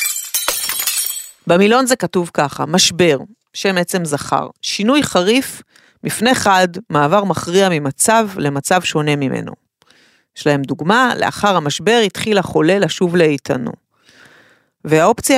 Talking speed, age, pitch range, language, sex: 110 wpm, 30-49, 160-215 Hz, English, female